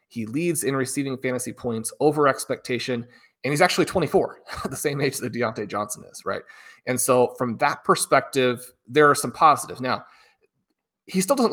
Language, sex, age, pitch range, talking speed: English, male, 30-49, 120-145 Hz, 170 wpm